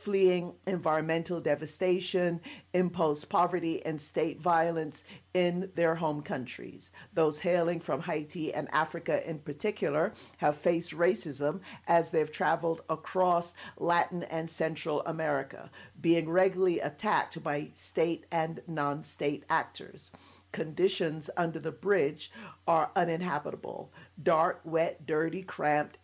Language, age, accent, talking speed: English, 50-69, American, 115 wpm